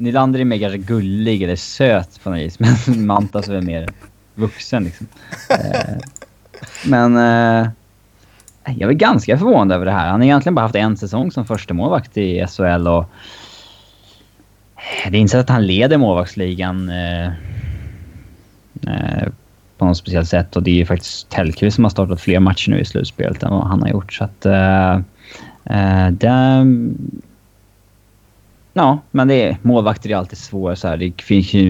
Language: Swedish